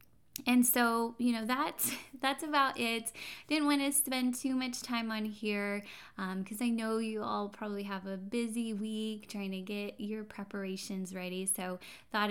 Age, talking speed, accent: 20-39, 175 wpm, American